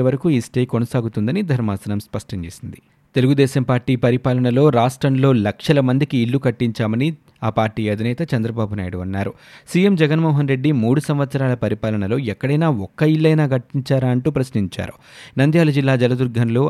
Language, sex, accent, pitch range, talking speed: Telugu, male, native, 115-145 Hz, 130 wpm